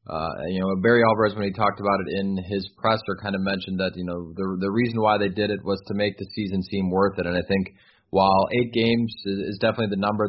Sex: male